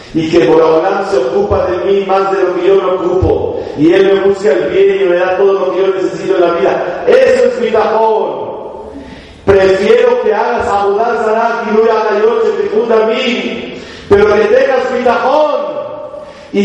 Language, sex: Spanish, male